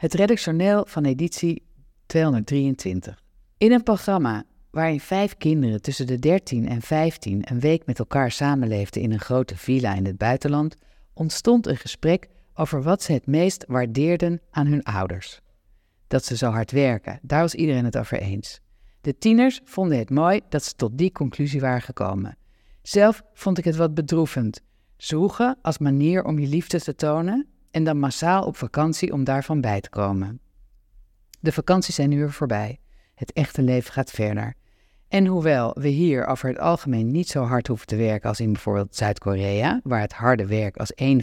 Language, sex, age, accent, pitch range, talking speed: Dutch, female, 50-69, Dutch, 110-155 Hz, 175 wpm